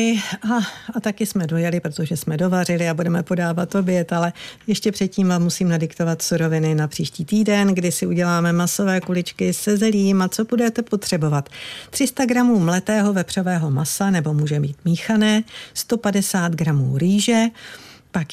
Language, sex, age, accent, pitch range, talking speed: Czech, female, 50-69, native, 155-195 Hz, 150 wpm